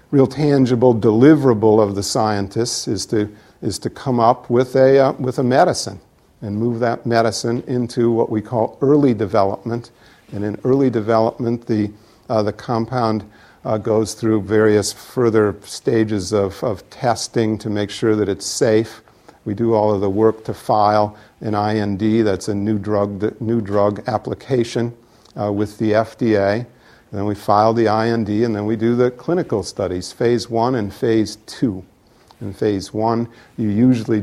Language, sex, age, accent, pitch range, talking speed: English, male, 50-69, American, 100-115 Hz, 165 wpm